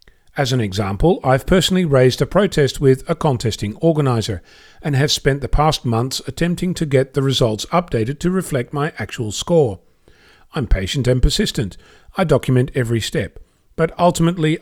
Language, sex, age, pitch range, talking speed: English, male, 40-59, 120-165 Hz, 160 wpm